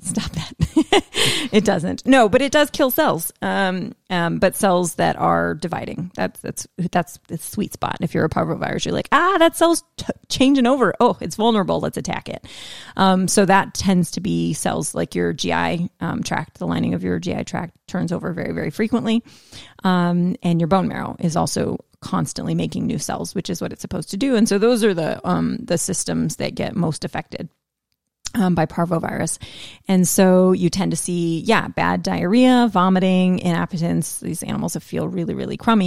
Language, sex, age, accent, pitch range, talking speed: English, female, 30-49, American, 175-220 Hz, 190 wpm